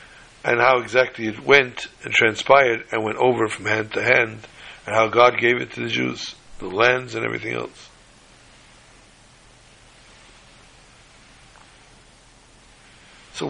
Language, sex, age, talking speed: English, male, 60-79, 125 wpm